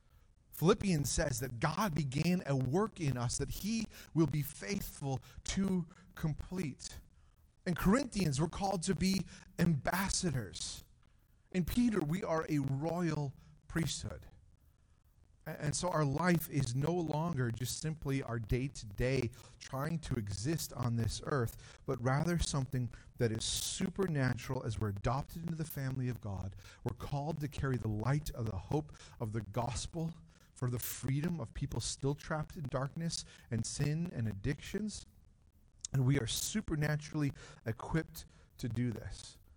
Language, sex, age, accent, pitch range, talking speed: English, male, 40-59, American, 115-160 Hz, 145 wpm